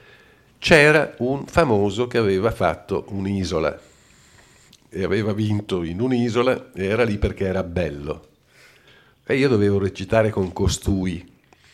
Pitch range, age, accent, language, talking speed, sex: 90-120 Hz, 50-69, native, Italian, 125 wpm, male